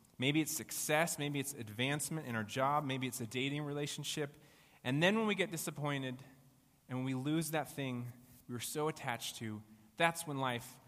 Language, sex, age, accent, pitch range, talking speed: English, male, 30-49, American, 115-145 Hz, 180 wpm